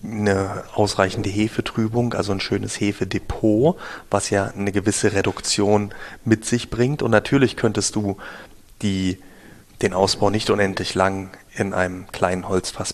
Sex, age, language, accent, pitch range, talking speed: male, 30-49, German, German, 100-115 Hz, 130 wpm